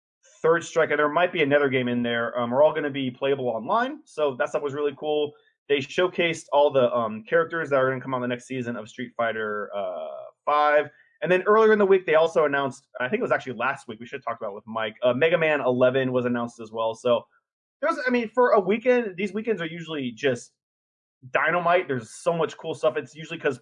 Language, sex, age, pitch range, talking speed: English, male, 20-39, 125-160 Hz, 240 wpm